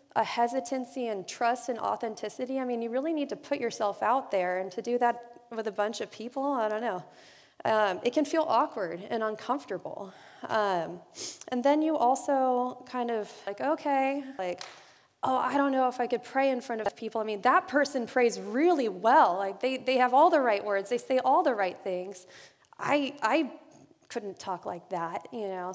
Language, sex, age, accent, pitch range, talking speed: English, female, 20-39, American, 205-265 Hz, 200 wpm